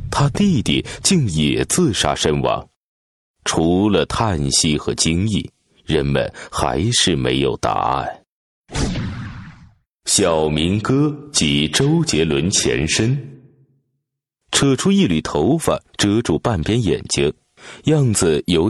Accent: native